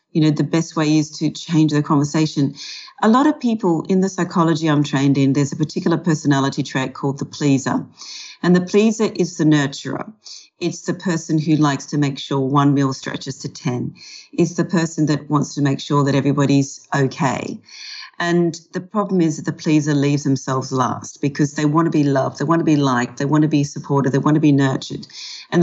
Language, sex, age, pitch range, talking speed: English, female, 40-59, 140-170 Hz, 210 wpm